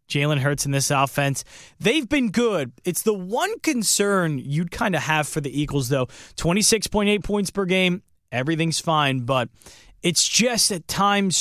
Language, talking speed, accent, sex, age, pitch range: English, 165 wpm, American, male, 20-39, 125-190 Hz